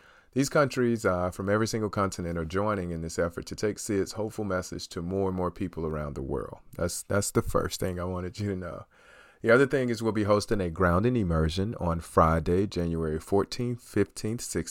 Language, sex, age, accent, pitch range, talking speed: English, male, 40-59, American, 85-105 Hz, 200 wpm